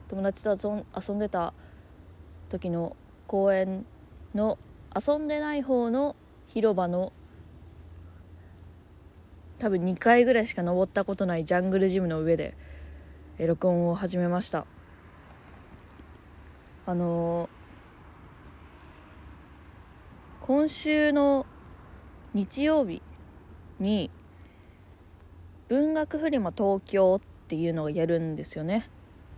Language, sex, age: Japanese, female, 20-39